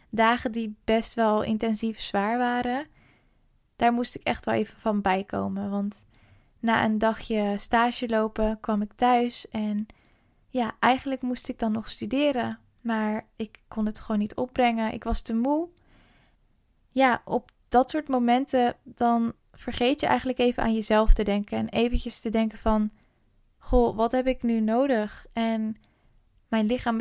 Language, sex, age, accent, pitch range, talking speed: Dutch, female, 10-29, Dutch, 215-245 Hz, 160 wpm